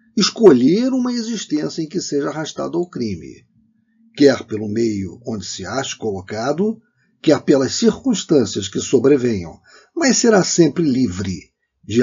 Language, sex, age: Portuguese, male, 50-69